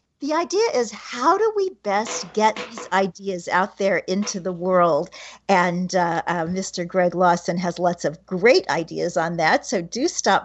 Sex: female